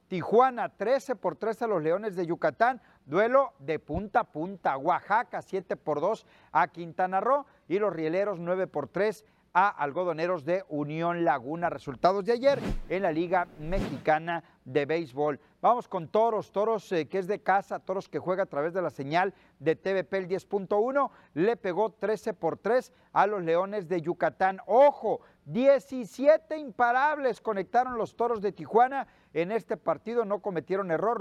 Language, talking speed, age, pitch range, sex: Spanish, 165 wpm, 40-59, 170-220 Hz, male